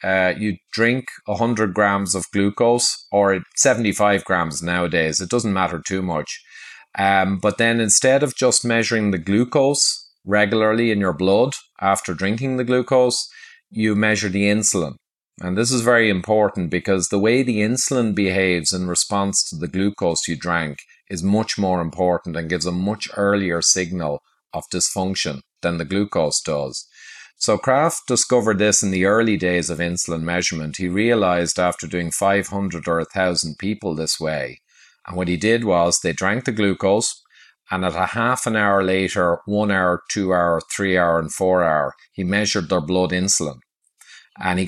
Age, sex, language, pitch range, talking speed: 30-49, male, English, 90-110 Hz, 170 wpm